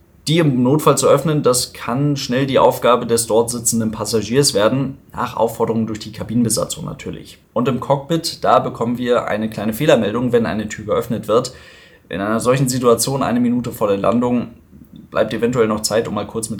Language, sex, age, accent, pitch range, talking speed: German, male, 20-39, German, 110-130 Hz, 190 wpm